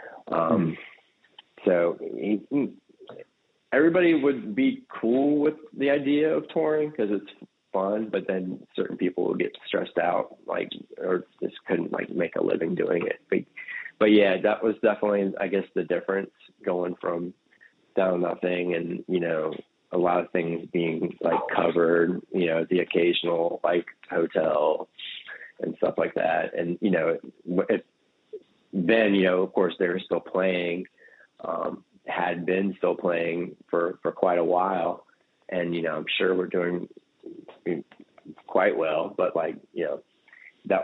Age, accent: 30-49, American